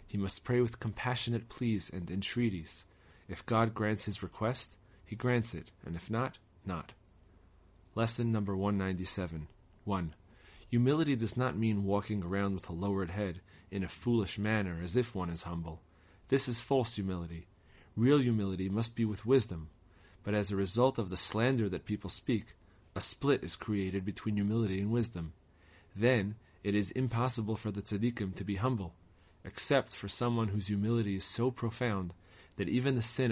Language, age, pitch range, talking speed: English, 30-49, 95-115 Hz, 170 wpm